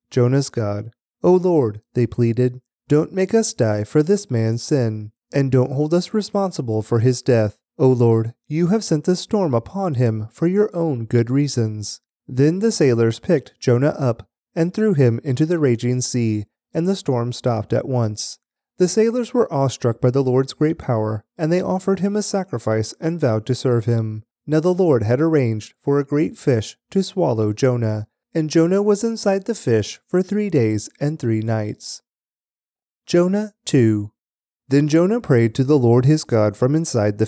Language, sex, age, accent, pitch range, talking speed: English, male, 30-49, American, 115-165 Hz, 180 wpm